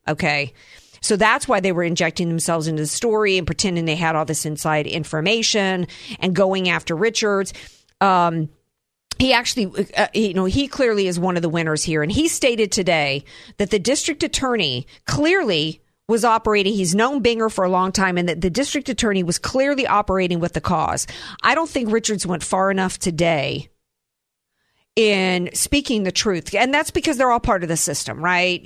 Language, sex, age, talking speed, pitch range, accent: English, female, 50-69, 185 wpm, 180-225 Hz, American